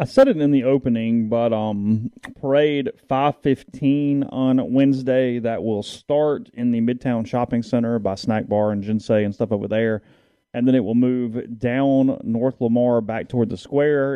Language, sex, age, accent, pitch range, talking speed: English, male, 30-49, American, 105-125 Hz, 170 wpm